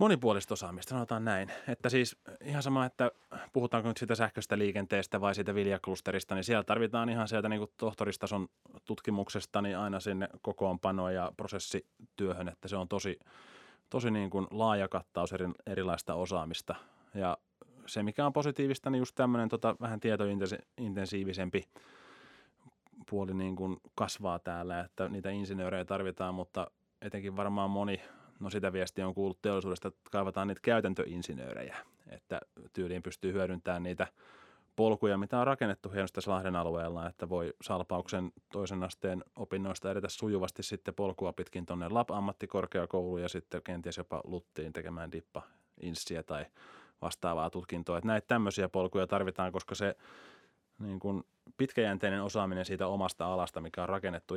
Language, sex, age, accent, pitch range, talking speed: Finnish, male, 20-39, native, 90-105 Hz, 145 wpm